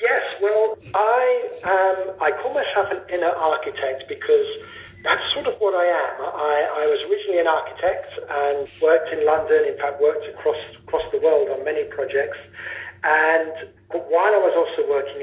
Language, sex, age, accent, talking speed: English, male, 50-69, British, 170 wpm